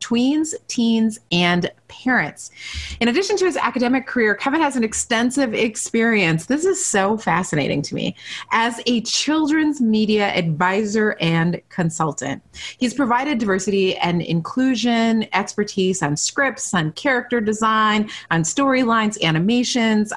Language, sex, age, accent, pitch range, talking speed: English, female, 30-49, American, 180-250 Hz, 125 wpm